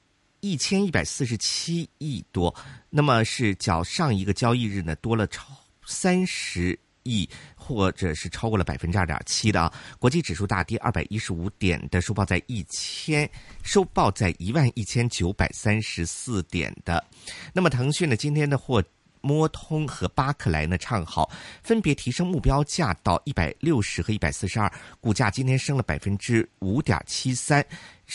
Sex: male